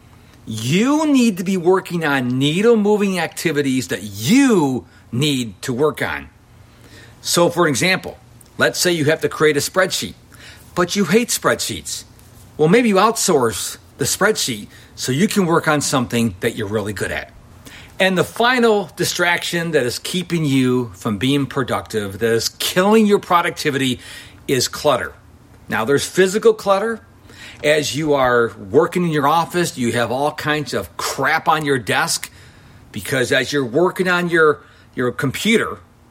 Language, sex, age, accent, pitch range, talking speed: English, male, 50-69, American, 120-185 Hz, 155 wpm